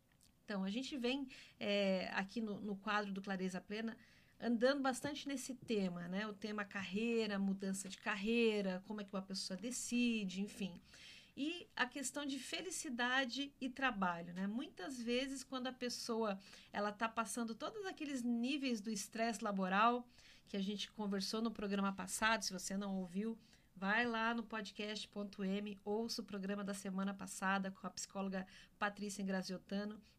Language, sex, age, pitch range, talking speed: Portuguese, female, 40-59, 205-270 Hz, 155 wpm